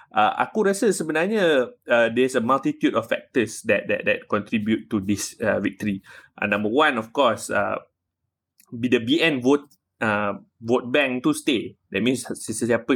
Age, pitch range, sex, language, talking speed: 20-39, 110-140 Hz, male, Malay, 160 wpm